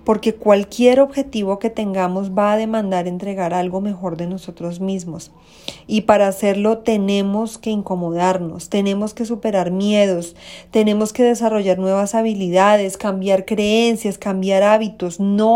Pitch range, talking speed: 185-215 Hz, 130 wpm